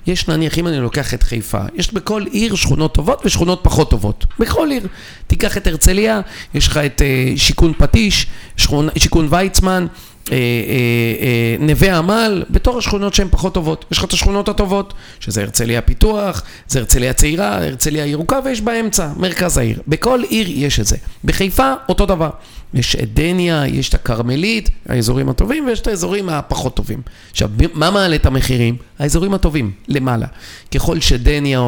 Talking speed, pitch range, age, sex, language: 155 wpm, 125-210 Hz, 40-59, male, Hebrew